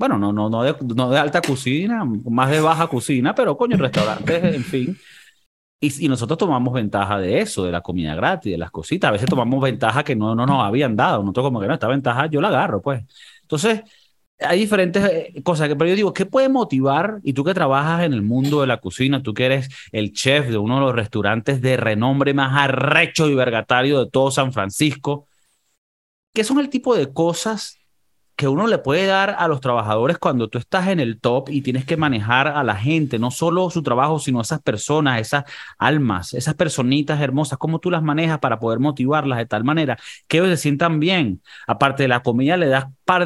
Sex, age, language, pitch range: male, 30-49, Spanish, 125-170 Hz